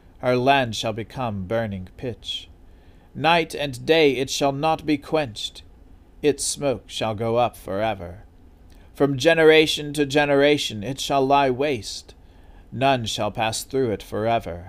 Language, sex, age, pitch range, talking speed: English, male, 40-59, 90-140 Hz, 140 wpm